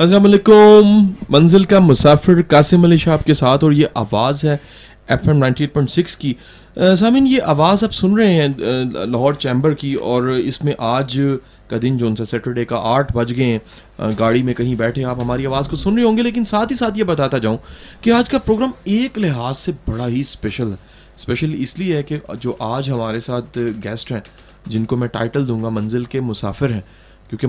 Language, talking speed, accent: English, 175 wpm, Indian